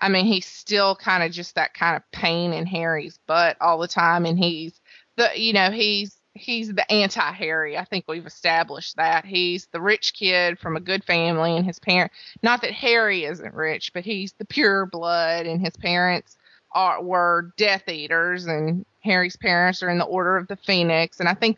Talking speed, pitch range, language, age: 200 wpm, 170-225 Hz, English, 20-39